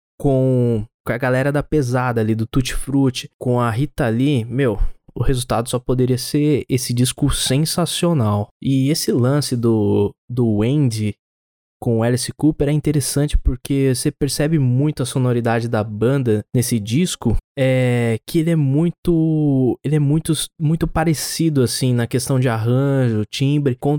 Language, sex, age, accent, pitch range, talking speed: Portuguese, male, 20-39, Brazilian, 120-145 Hz, 145 wpm